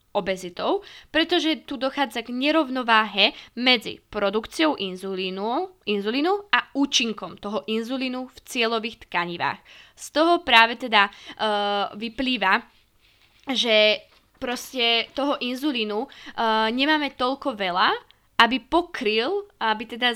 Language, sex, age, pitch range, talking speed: Slovak, female, 20-39, 215-265 Hz, 105 wpm